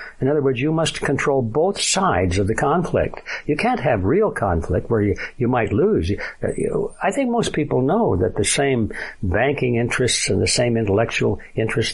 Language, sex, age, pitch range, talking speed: English, male, 60-79, 110-140 Hz, 180 wpm